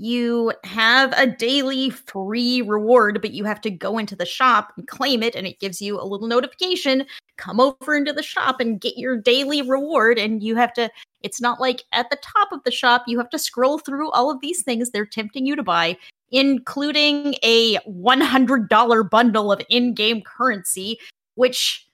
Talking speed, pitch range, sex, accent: 190 wpm, 215-275 Hz, female, American